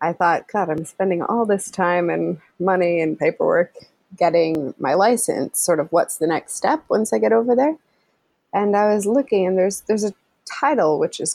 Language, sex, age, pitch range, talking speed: English, female, 20-39, 175-225 Hz, 195 wpm